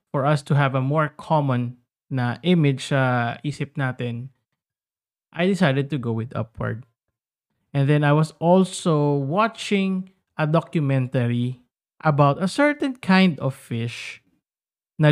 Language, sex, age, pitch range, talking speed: Filipino, male, 20-39, 125-165 Hz, 135 wpm